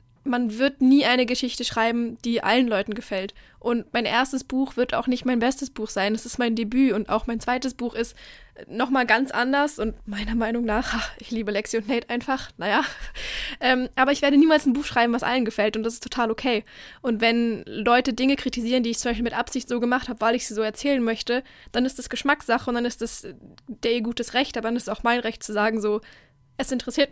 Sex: female